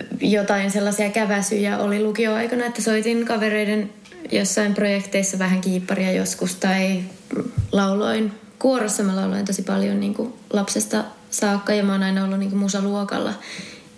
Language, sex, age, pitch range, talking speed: Finnish, female, 20-39, 185-205 Hz, 130 wpm